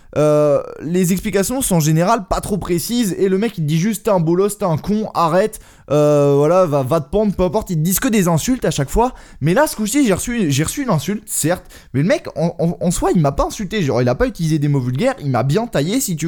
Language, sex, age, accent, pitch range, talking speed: English, male, 20-39, French, 150-210 Hz, 275 wpm